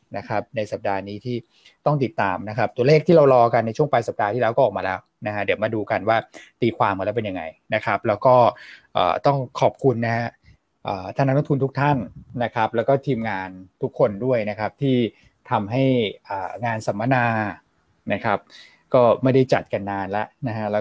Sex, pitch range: male, 105-130 Hz